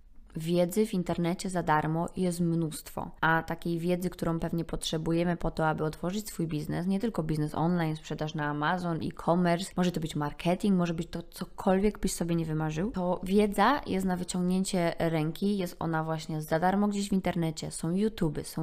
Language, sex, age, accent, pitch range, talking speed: Polish, female, 20-39, native, 165-200 Hz, 180 wpm